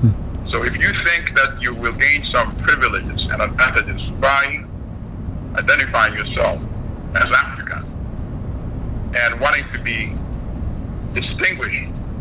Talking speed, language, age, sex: 110 wpm, English, 60-79, male